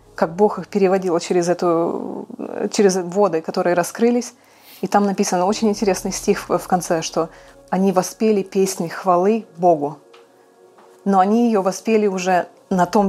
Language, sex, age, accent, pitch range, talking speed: Russian, female, 20-39, native, 175-225 Hz, 140 wpm